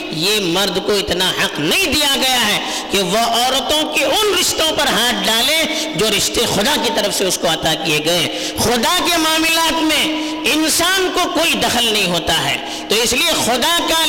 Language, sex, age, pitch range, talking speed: Urdu, female, 50-69, 240-335 Hz, 190 wpm